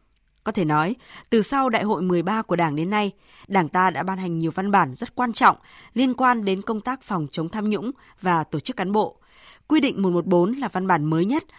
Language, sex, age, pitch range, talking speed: Vietnamese, female, 20-39, 175-225 Hz, 235 wpm